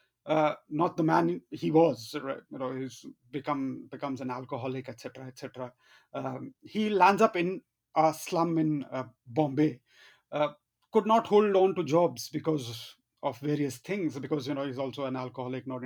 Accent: Indian